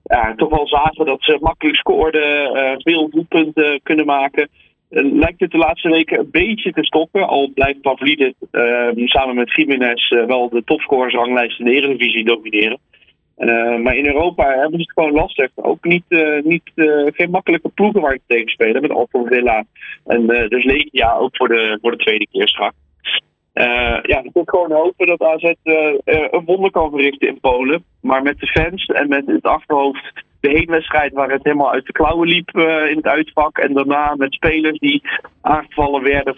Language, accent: Dutch, Dutch